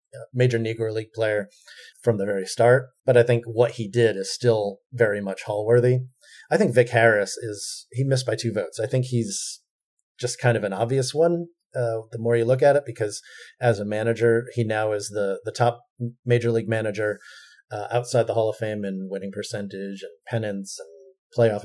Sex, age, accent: male, 30-49, American